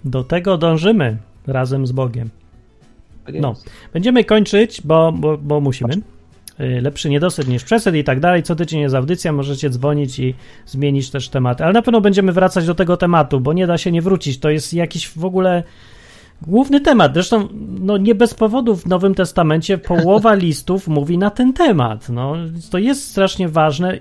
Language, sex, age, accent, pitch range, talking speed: Polish, male, 30-49, native, 140-195 Hz, 175 wpm